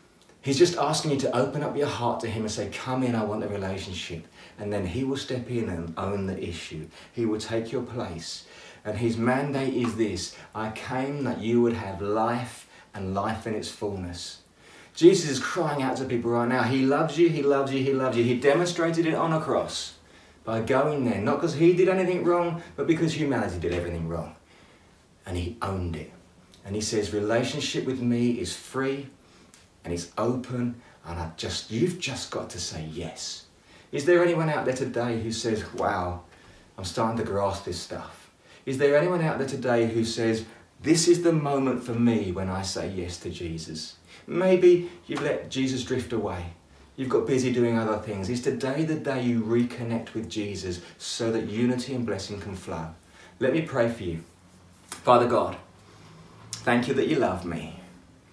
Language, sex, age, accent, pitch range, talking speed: English, male, 30-49, British, 95-135 Hz, 195 wpm